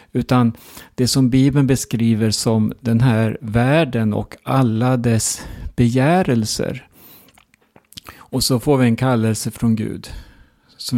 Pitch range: 110-125 Hz